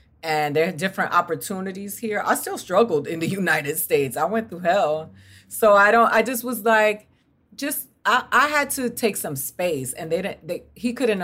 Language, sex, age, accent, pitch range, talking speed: English, female, 40-59, American, 160-220 Hz, 205 wpm